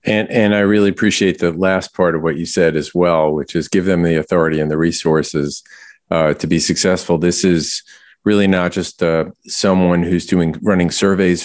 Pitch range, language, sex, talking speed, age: 80-95 Hz, English, male, 200 wpm, 40-59